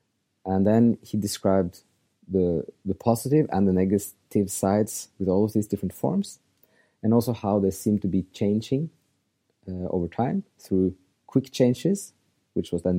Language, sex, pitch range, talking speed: English, male, 95-115 Hz, 155 wpm